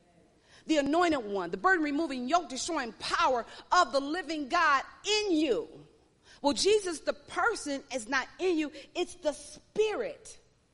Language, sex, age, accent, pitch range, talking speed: English, female, 40-59, American, 230-370 Hz, 135 wpm